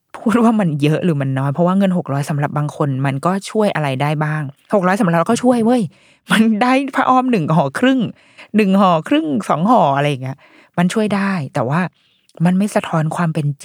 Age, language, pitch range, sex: 20-39, Thai, 150-200 Hz, female